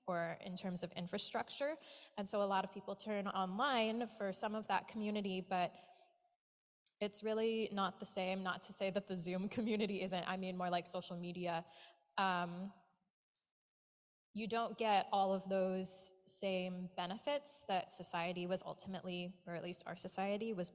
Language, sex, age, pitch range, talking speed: English, female, 20-39, 175-200 Hz, 165 wpm